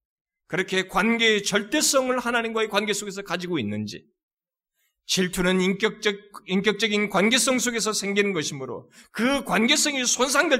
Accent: native